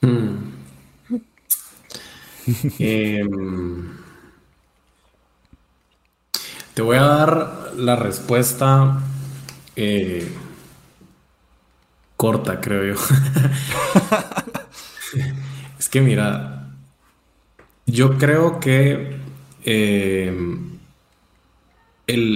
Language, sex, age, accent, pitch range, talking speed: Spanish, male, 20-39, Mexican, 100-130 Hz, 50 wpm